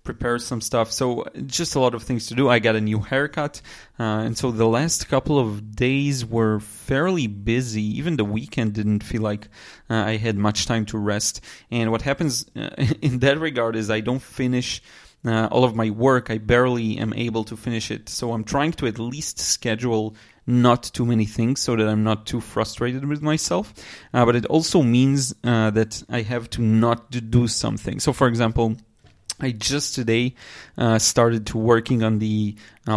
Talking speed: 195 wpm